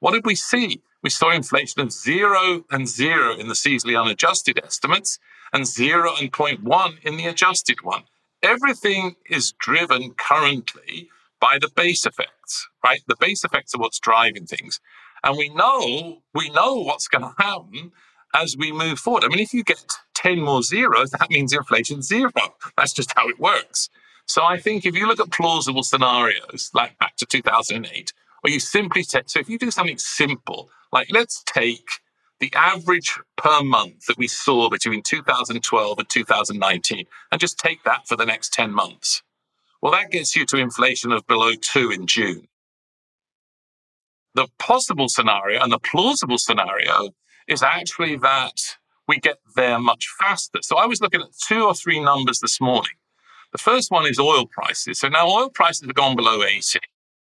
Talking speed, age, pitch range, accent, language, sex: 175 wpm, 50-69, 135-200 Hz, British, English, male